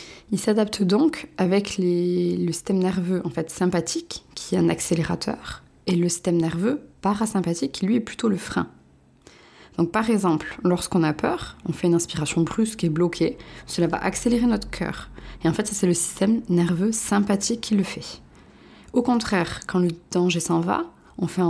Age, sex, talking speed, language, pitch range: 20-39, female, 170 wpm, French, 170-210 Hz